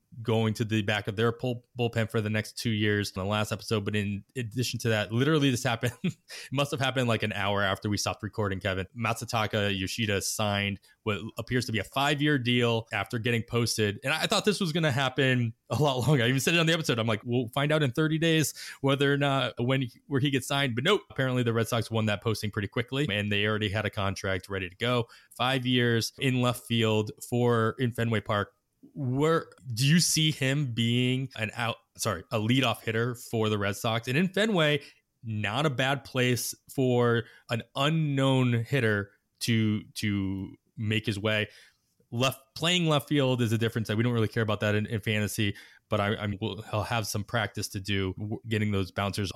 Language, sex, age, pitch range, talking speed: English, male, 20-39, 105-130 Hz, 210 wpm